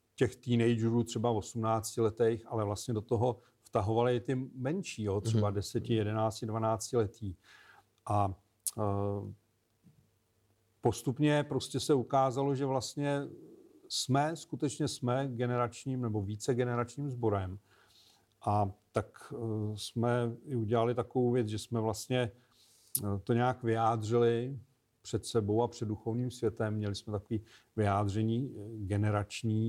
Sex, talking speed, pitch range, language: male, 115 wpm, 105-120 Hz, Czech